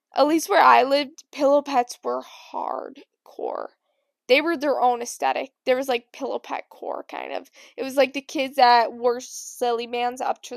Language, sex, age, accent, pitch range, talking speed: English, female, 10-29, American, 240-285 Hz, 185 wpm